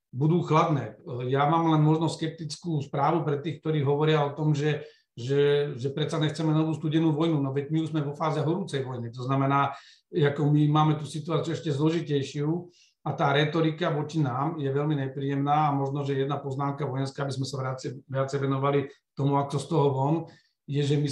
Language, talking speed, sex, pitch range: Slovak, 195 wpm, male, 140-160 Hz